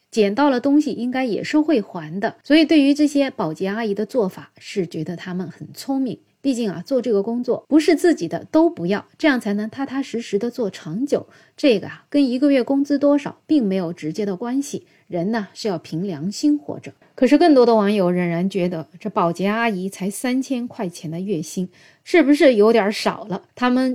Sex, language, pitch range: female, Chinese, 190-255 Hz